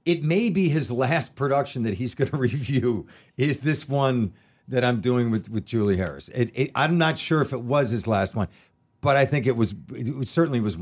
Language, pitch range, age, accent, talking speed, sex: English, 100-130 Hz, 50-69, American, 220 wpm, male